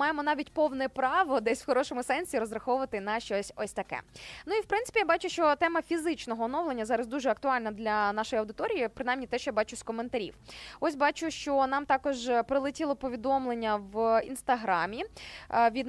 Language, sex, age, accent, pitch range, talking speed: Ukrainian, female, 20-39, native, 245-315 Hz, 175 wpm